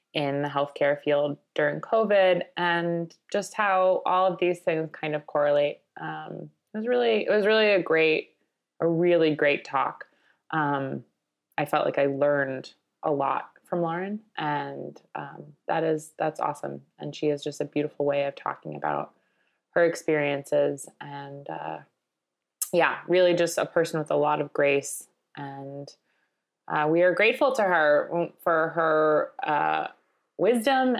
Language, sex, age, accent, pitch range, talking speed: English, female, 20-39, American, 150-190 Hz, 155 wpm